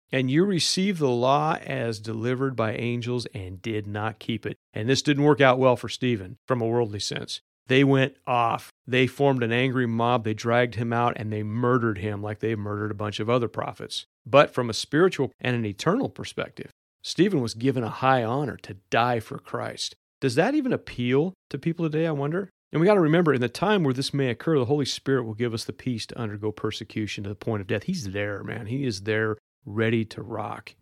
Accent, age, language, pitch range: American, 40-59, English, 110-135 Hz